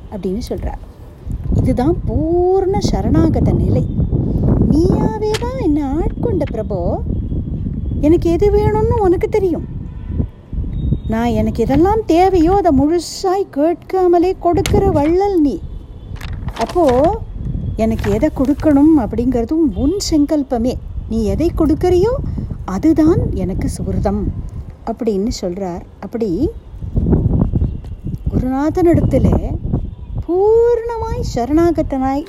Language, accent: Tamil, native